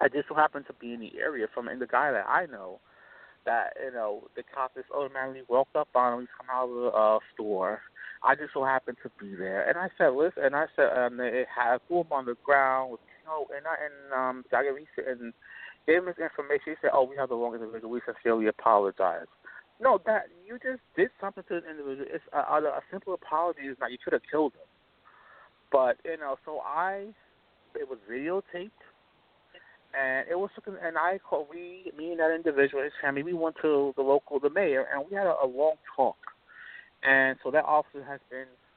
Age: 30-49